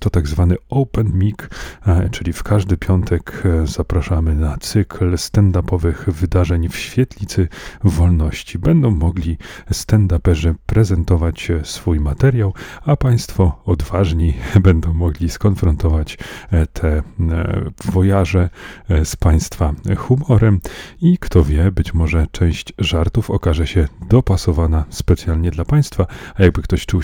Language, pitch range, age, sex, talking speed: Polish, 85-100 Hz, 40-59, male, 115 wpm